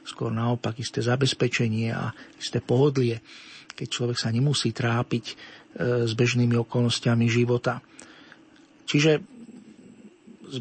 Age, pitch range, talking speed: 40-59, 120-140 Hz, 100 wpm